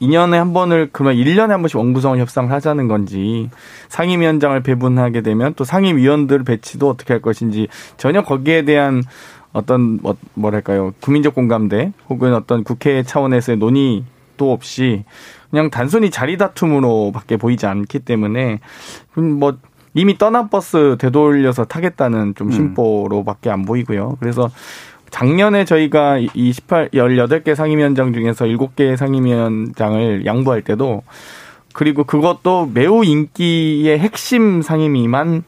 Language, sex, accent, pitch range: Korean, male, native, 115-150 Hz